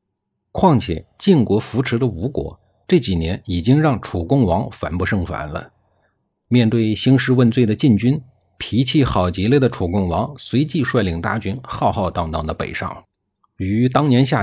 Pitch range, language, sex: 95-130 Hz, Chinese, male